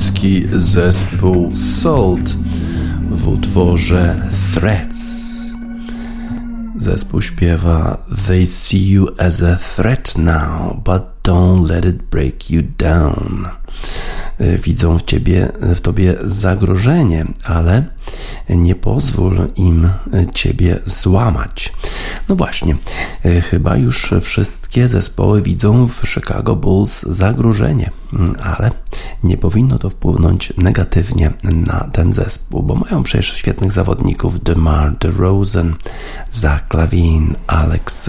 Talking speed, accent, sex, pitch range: 100 wpm, native, male, 85-100 Hz